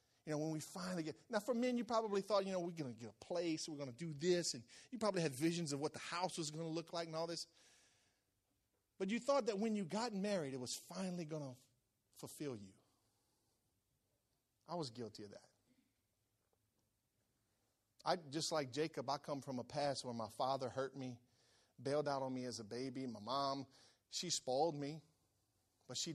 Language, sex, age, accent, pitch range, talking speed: English, male, 40-59, American, 110-170 Hz, 205 wpm